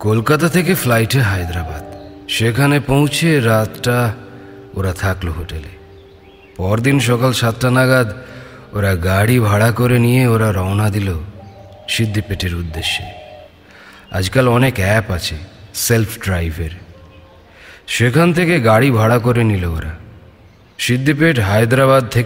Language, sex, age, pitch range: Bengali, male, 40-59, 95-130 Hz